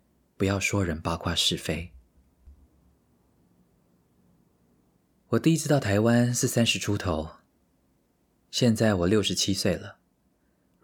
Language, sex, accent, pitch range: Chinese, male, native, 85-105 Hz